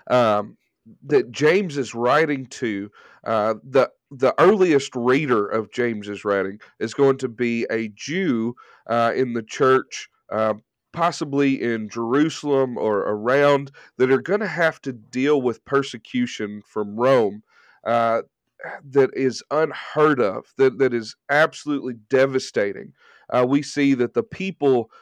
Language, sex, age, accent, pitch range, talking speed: English, male, 40-59, American, 115-145 Hz, 135 wpm